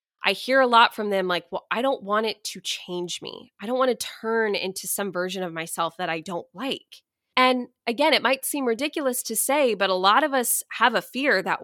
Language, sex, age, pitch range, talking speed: English, female, 20-39, 200-275 Hz, 235 wpm